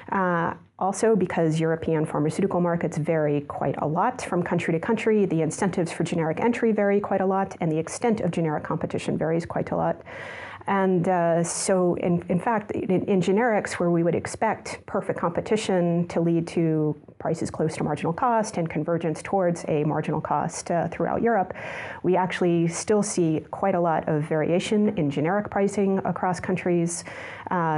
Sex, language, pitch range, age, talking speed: female, English, 165-195 Hz, 30-49, 175 wpm